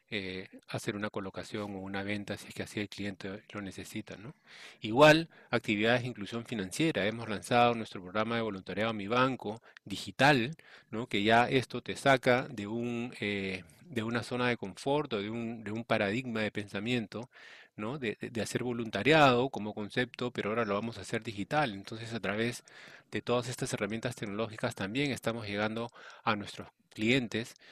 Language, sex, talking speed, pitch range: English, male, 175 wpm, 105-125 Hz